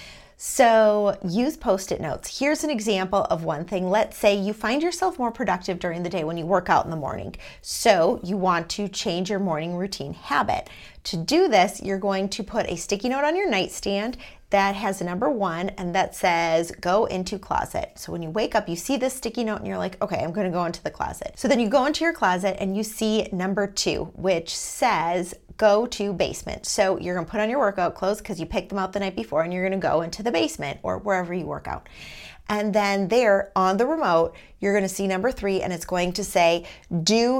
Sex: female